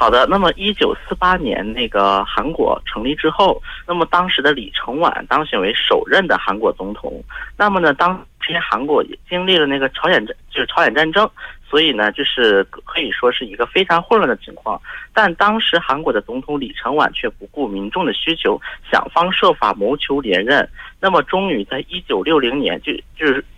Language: Korean